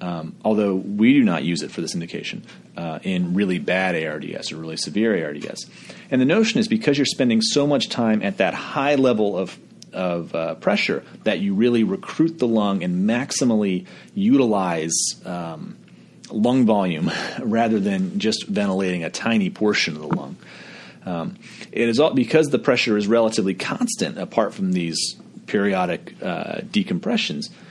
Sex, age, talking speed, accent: male, 30-49, 160 wpm, American